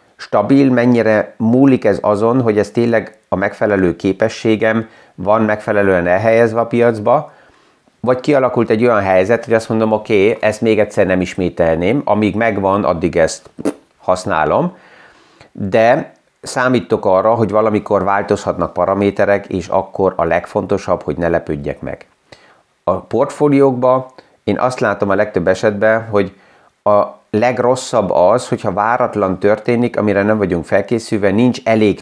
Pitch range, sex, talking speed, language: 100-120 Hz, male, 135 wpm, Hungarian